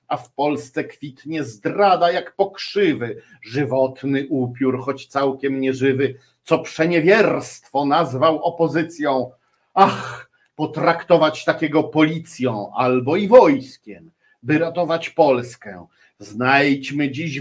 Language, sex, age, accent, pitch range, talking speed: Polish, male, 50-69, native, 135-175 Hz, 95 wpm